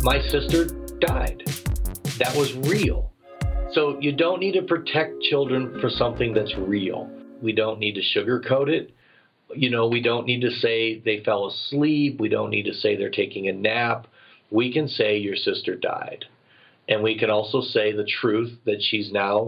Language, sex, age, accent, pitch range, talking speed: English, male, 40-59, American, 110-140 Hz, 180 wpm